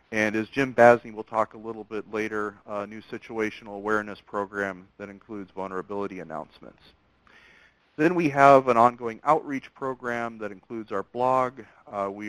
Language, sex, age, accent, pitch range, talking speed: English, male, 50-69, American, 100-120 Hz, 155 wpm